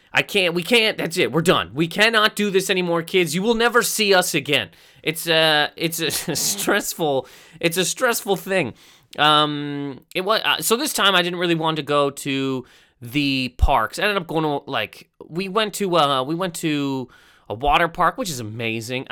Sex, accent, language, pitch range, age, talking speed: male, American, English, 140-195 Hz, 20-39, 200 wpm